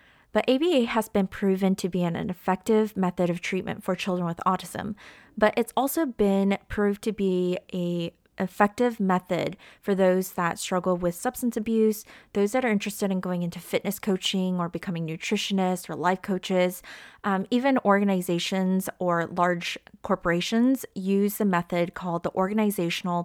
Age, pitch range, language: 20-39, 180-220 Hz, English